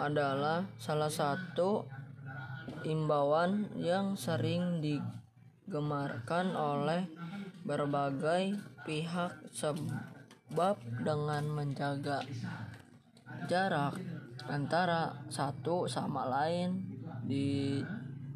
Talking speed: 60 wpm